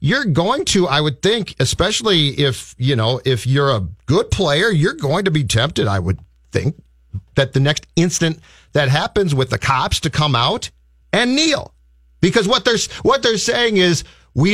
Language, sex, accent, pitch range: English, male, American, 120-175 Hz